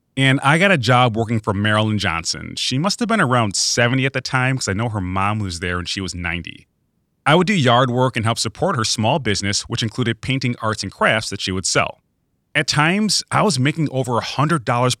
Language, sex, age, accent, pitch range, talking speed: English, male, 30-49, American, 105-145 Hz, 230 wpm